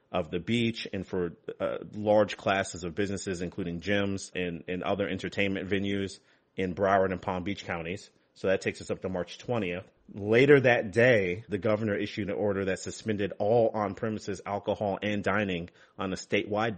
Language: English